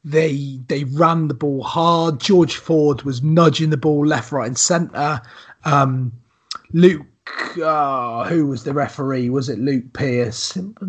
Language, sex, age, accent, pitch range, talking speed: English, male, 30-49, British, 125-155 Hz, 150 wpm